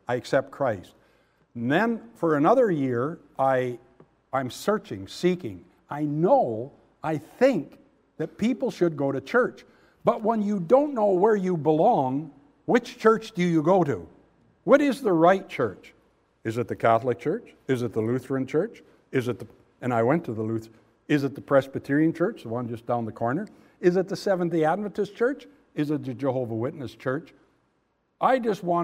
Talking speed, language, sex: 180 wpm, English, male